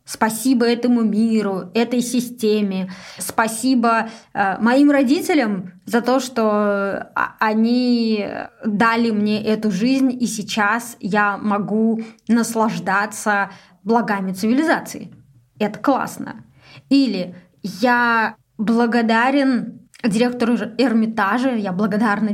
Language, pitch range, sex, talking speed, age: Russian, 205-235 Hz, female, 85 wpm, 20-39